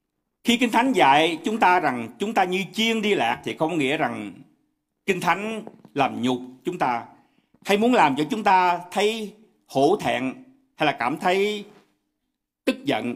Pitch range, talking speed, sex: 175-260 Hz, 180 wpm, male